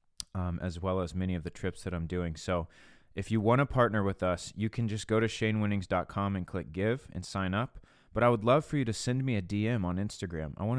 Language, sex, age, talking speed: English, male, 30-49, 255 wpm